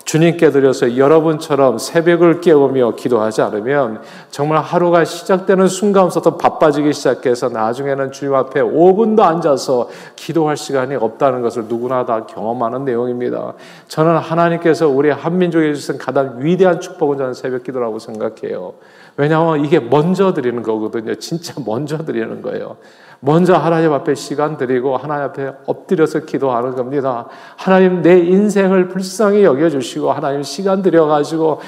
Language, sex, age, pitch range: Korean, male, 40-59, 140-175 Hz